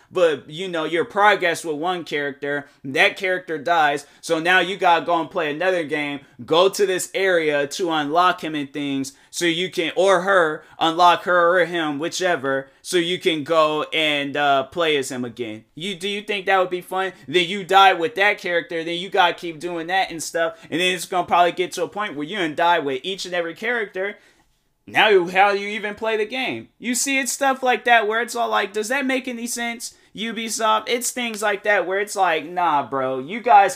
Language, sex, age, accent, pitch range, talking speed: English, male, 20-39, American, 150-195 Hz, 230 wpm